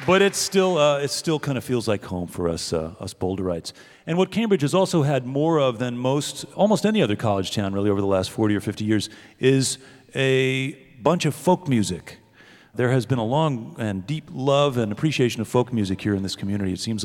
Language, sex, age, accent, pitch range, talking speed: English, male, 40-59, American, 110-140 Hz, 225 wpm